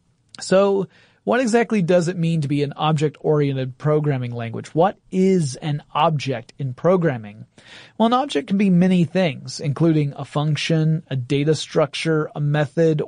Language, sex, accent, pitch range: English, male, American, 140-180 Hz